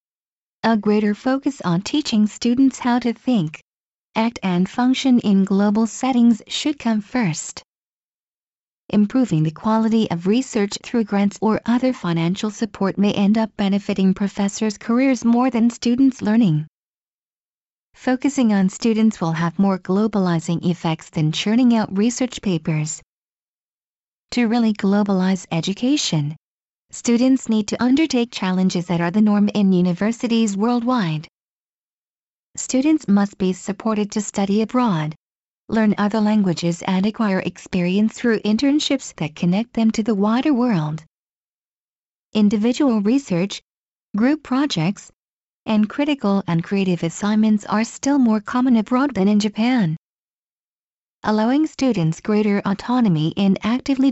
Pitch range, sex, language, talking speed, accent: 185-240 Hz, female, English, 125 wpm, American